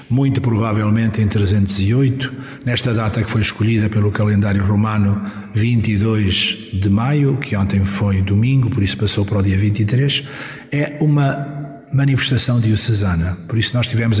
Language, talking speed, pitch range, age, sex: Portuguese, 145 wpm, 105-120 Hz, 50-69, male